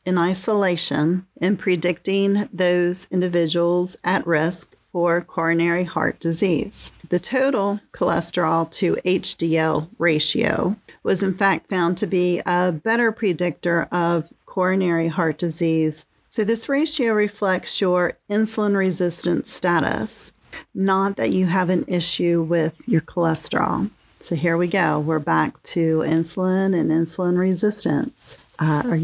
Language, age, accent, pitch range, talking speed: English, 40-59, American, 165-195 Hz, 125 wpm